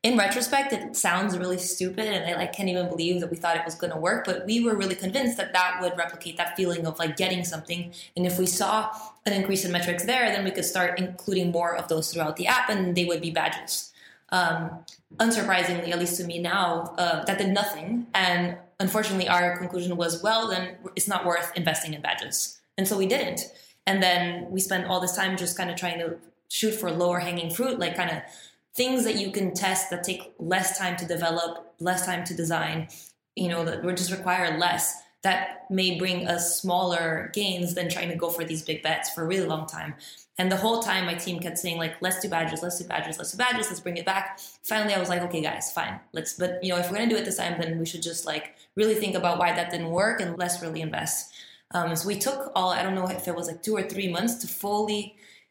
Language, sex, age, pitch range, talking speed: English, female, 20-39, 170-195 Hz, 240 wpm